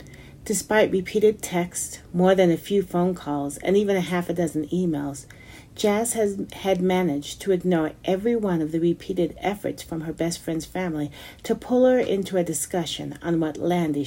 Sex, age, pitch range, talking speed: female, 40-59, 145-180 Hz, 180 wpm